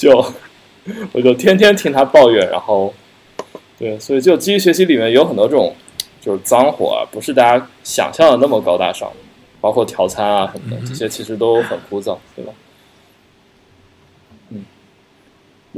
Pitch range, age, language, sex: 110-175 Hz, 20-39, Chinese, male